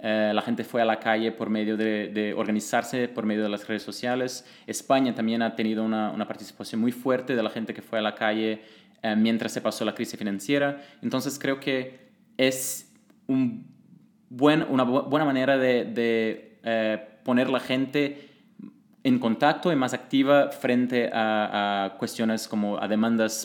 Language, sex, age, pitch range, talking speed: Spanish, male, 20-39, 110-135 Hz, 180 wpm